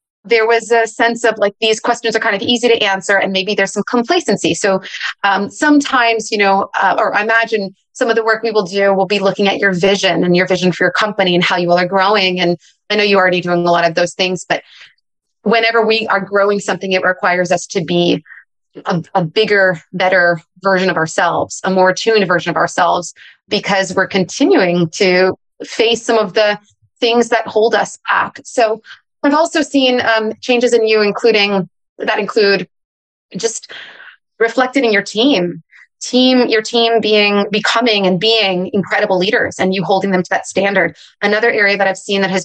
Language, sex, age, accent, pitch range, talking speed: English, female, 30-49, American, 185-220 Hz, 200 wpm